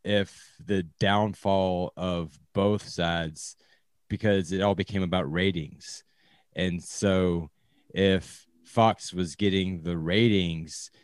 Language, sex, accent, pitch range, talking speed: English, male, American, 85-95 Hz, 110 wpm